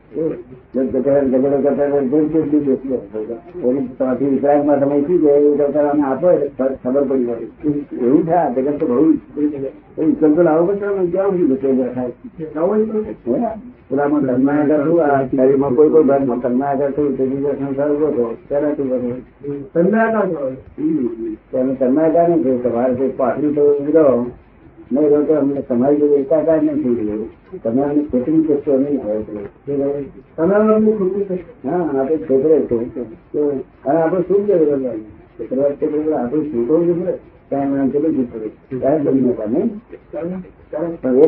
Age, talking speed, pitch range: 60-79, 40 wpm, 130-165 Hz